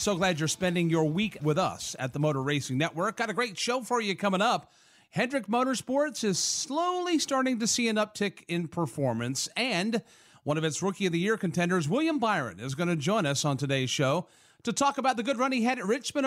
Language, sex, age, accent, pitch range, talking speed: English, male, 40-59, American, 155-225 Hz, 225 wpm